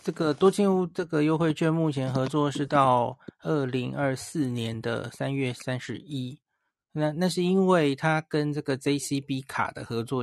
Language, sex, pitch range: Chinese, male, 125-155 Hz